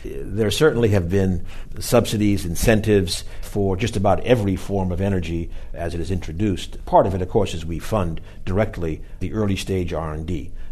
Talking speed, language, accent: 170 wpm, English, American